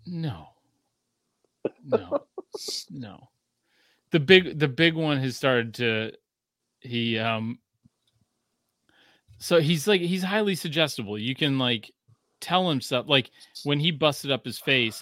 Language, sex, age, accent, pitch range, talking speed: English, male, 30-49, American, 115-150 Hz, 130 wpm